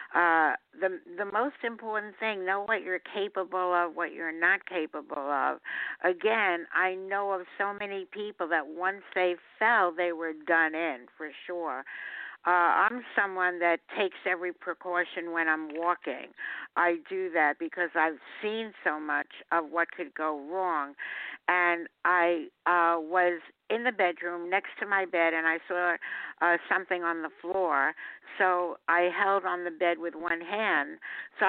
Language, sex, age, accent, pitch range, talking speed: English, female, 60-79, American, 170-205 Hz, 160 wpm